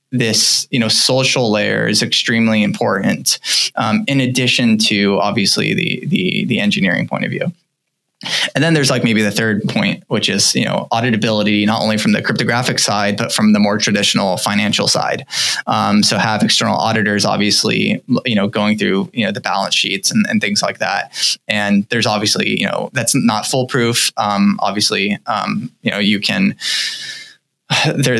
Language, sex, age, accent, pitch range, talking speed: English, male, 20-39, American, 105-160 Hz, 175 wpm